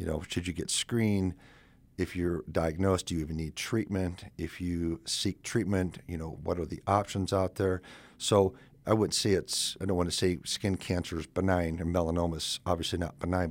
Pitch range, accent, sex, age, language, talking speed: 85-95 Hz, American, male, 50-69, English, 205 wpm